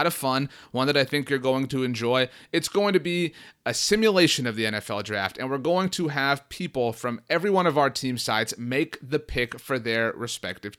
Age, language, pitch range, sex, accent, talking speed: 30-49, English, 115-160 Hz, male, American, 215 wpm